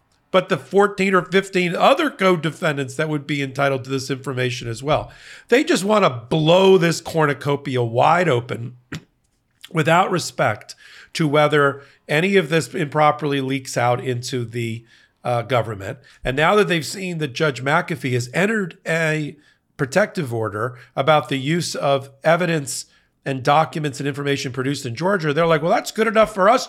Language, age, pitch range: English, 40-59, 130-165 Hz